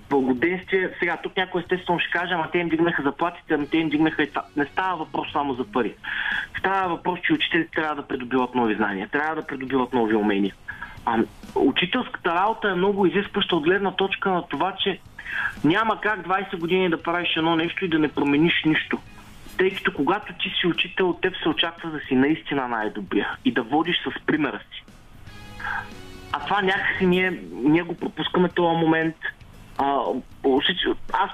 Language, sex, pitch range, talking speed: Bulgarian, male, 140-185 Hz, 180 wpm